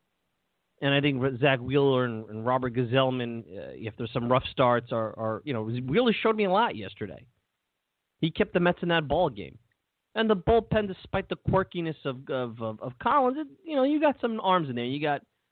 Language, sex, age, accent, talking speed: English, male, 30-49, American, 215 wpm